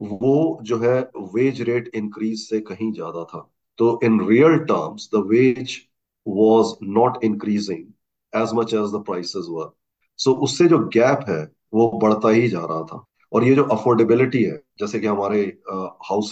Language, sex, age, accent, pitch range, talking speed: Hindi, male, 40-59, native, 105-130 Hz, 150 wpm